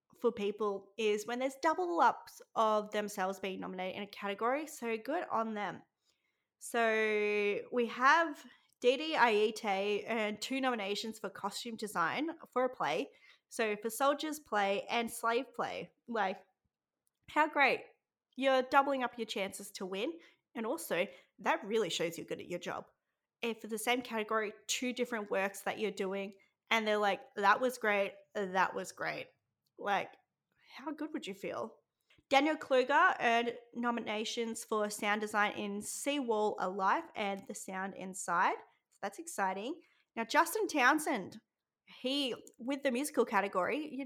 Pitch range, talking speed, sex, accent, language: 210-280 Hz, 150 wpm, female, Australian, English